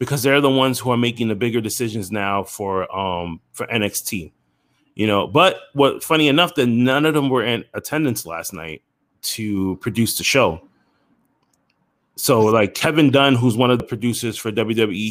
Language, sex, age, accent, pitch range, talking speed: English, male, 20-39, American, 105-125 Hz, 180 wpm